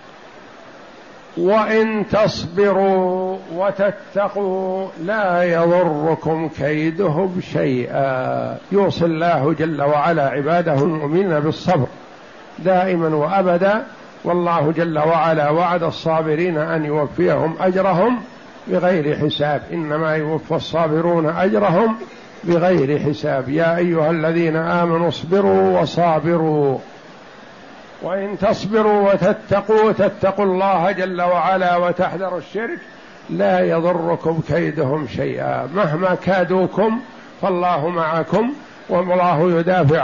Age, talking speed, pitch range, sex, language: 60-79, 85 wpm, 160-195 Hz, male, Arabic